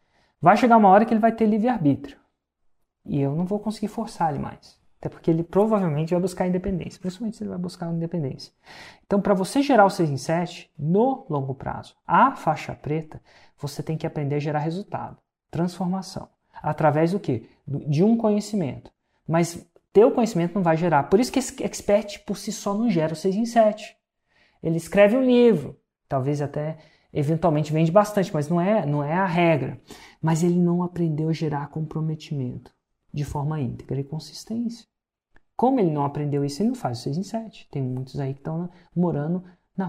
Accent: Brazilian